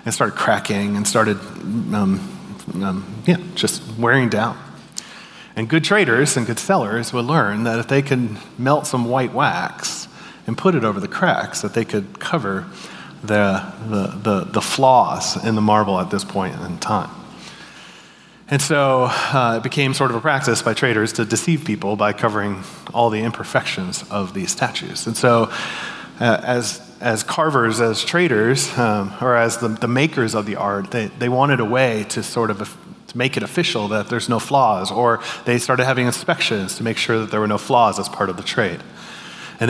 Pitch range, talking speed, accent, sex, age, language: 110-140 Hz, 190 wpm, American, male, 30-49, English